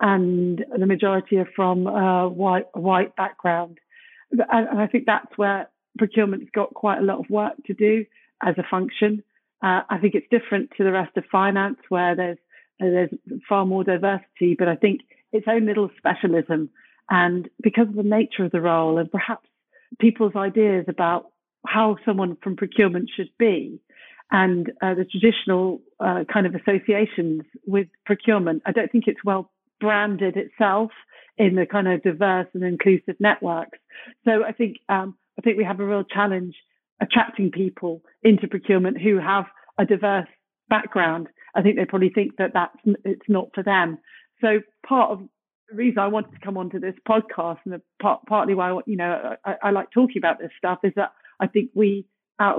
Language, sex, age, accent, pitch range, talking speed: English, female, 40-59, British, 185-215 Hz, 180 wpm